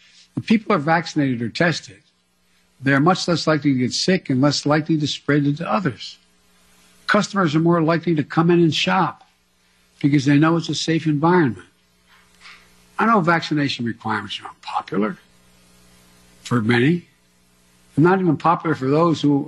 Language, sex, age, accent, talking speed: English, male, 60-79, American, 165 wpm